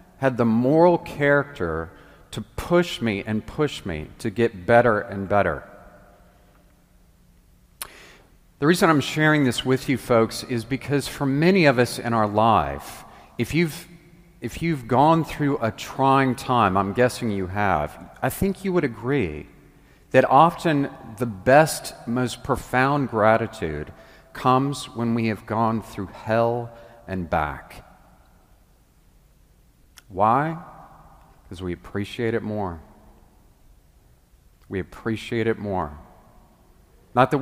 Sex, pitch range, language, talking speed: male, 100-135 Hz, English, 125 wpm